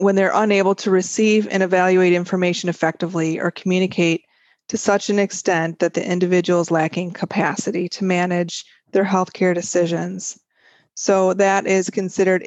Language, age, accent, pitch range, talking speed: English, 30-49, American, 180-200 Hz, 145 wpm